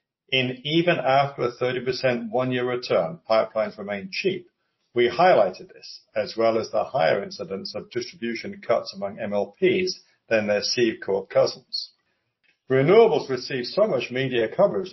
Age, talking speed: 60-79, 135 wpm